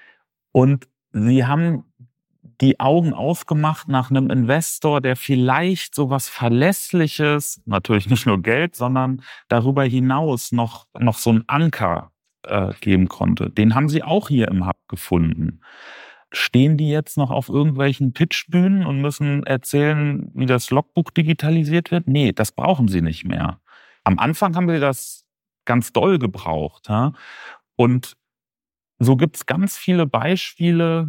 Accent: German